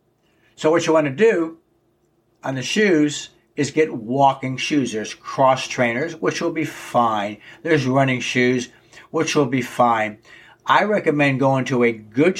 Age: 60-79